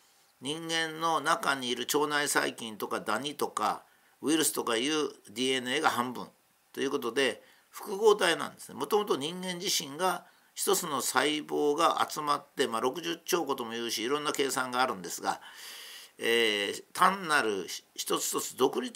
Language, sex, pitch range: Japanese, male, 130-175 Hz